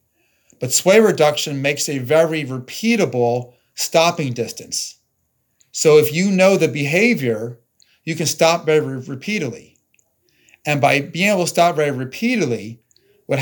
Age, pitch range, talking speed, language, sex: 40-59, 130-160 Hz, 130 wpm, English, male